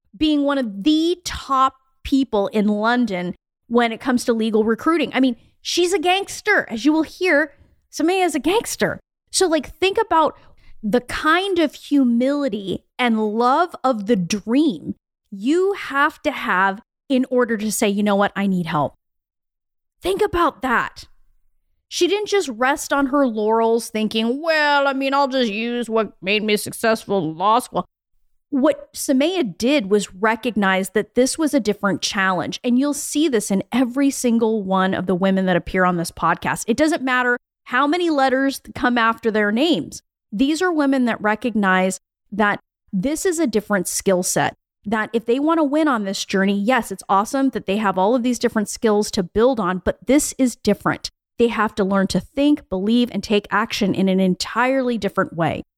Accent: American